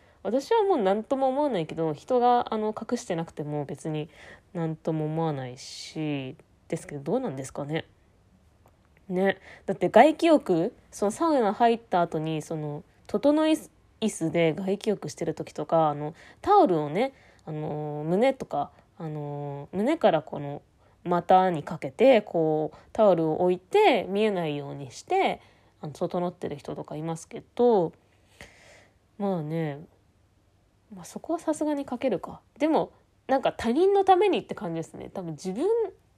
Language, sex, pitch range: Japanese, female, 150-255 Hz